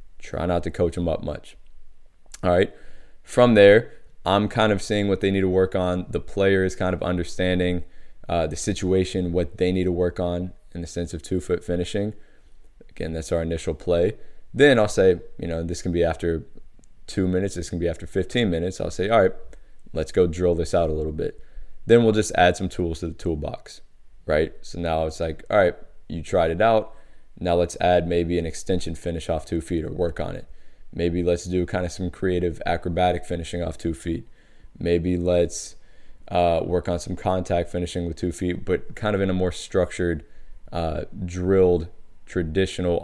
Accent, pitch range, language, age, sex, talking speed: American, 85-95 Hz, English, 20-39, male, 200 wpm